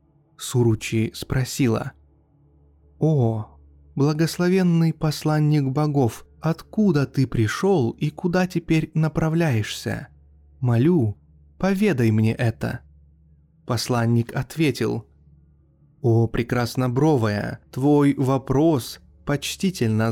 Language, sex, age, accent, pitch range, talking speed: Russian, male, 20-39, native, 110-160 Hz, 75 wpm